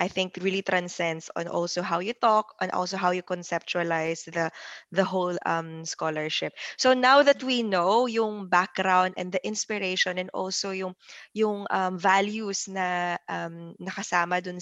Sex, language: female, Filipino